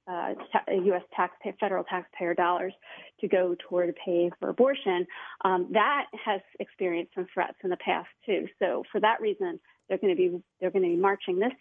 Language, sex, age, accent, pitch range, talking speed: English, female, 30-49, American, 180-215 Hz, 190 wpm